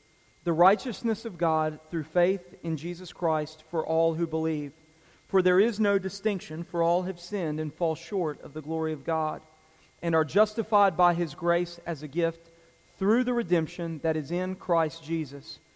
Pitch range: 160-190 Hz